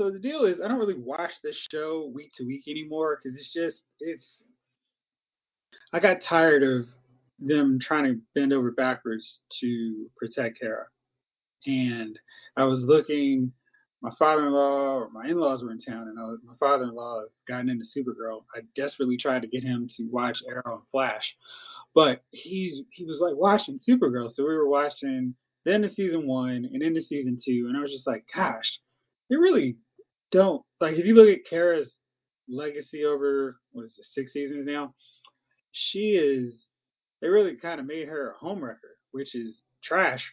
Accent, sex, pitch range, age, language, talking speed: American, male, 125-165 Hz, 20-39, English, 180 wpm